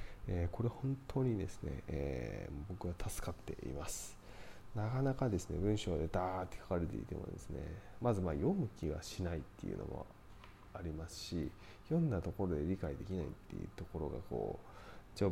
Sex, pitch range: male, 80-105 Hz